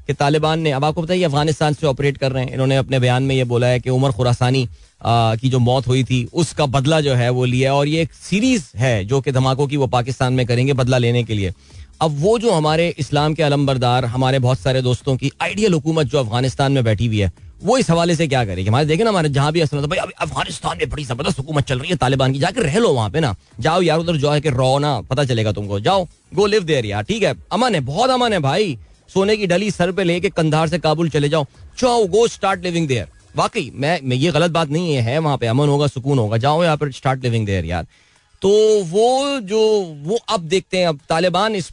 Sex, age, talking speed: male, 30-49, 215 wpm